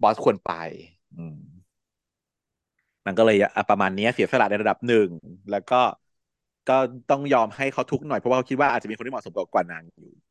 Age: 30-49